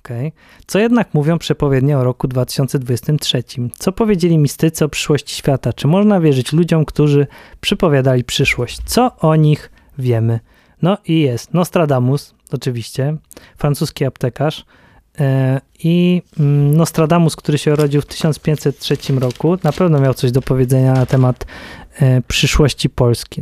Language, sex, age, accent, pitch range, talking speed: Polish, male, 20-39, native, 135-155 Hz, 135 wpm